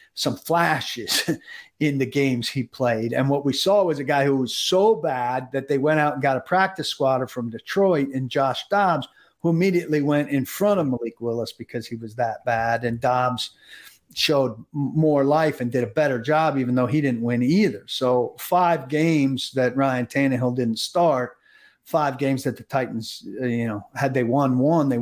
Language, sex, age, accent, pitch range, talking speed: English, male, 50-69, American, 125-150 Hz, 195 wpm